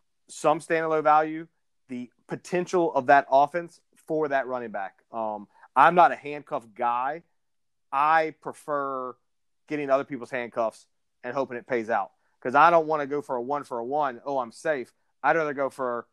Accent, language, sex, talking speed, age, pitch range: American, English, male, 180 wpm, 30-49, 120-150 Hz